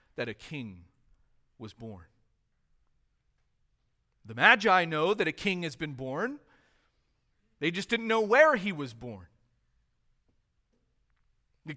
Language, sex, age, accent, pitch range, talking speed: English, male, 40-59, American, 140-235 Hz, 115 wpm